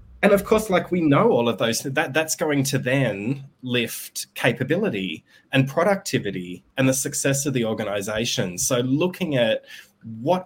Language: English